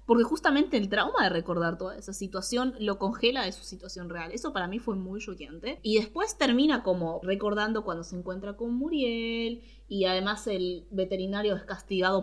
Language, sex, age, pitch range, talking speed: Spanish, female, 20-39, 190-260 Hz, 180 wpm